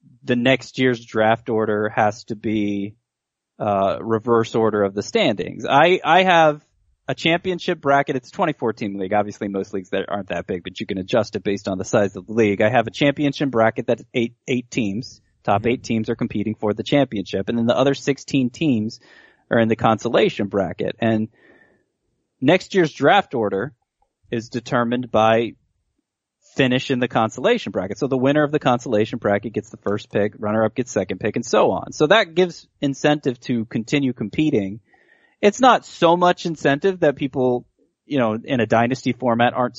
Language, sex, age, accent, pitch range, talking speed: English, male, 30-49, American, 105-135 Hz, 190 wpm